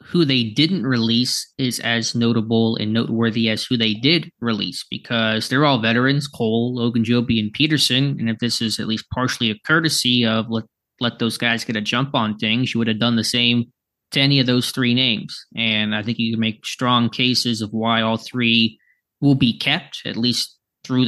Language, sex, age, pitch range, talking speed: English, male, 20-39, 115-135 Hz, 205 wpm